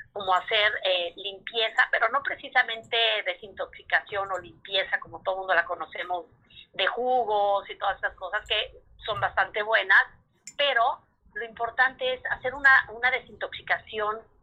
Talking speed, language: 135 wpm, Spanish